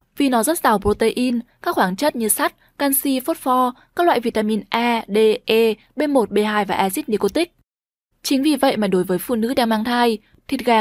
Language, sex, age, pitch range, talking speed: Vietnamese, female, 10-29, 205-265 Hz, 205 wpm